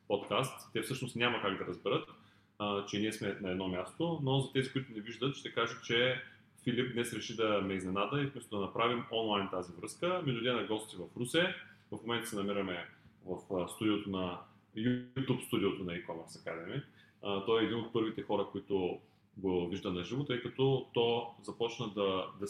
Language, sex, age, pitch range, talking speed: Bulgarian, male, 30-49, 95-120 Hz, 185 wpm